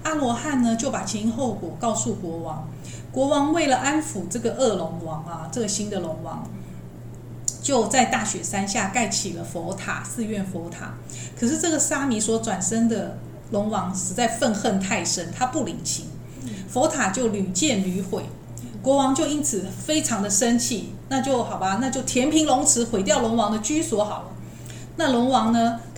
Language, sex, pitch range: Chinese, female, 190-260 Hz